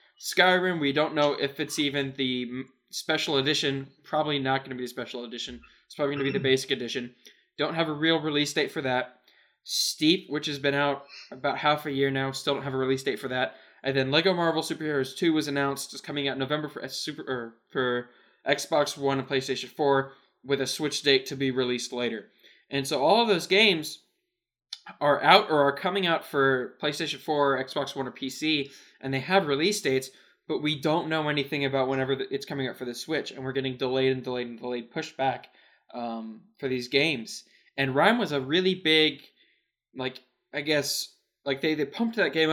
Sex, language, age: male, English, 10-29